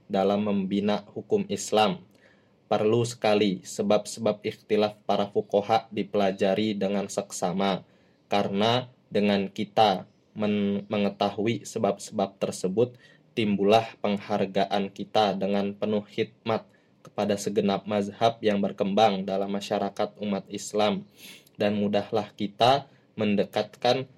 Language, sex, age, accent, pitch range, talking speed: Indonesian, male, 20-39, native, 100-115 Hz, 95 wpm